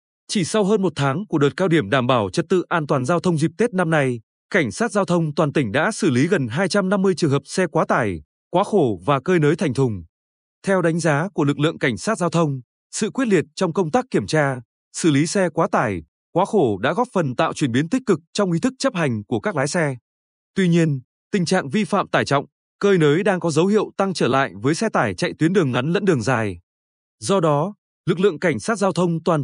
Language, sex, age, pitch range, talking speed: Vietnamese, male, 20-39, 140-195 Hz, 250 wpm